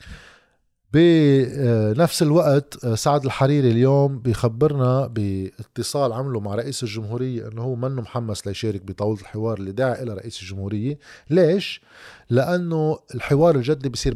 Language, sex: Arabic, male